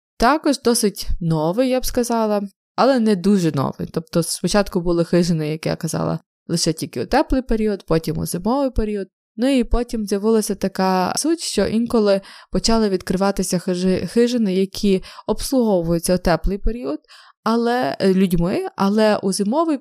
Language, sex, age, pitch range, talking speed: Ukrainian, female, 20-39, 180-225 Hz, 140 wpm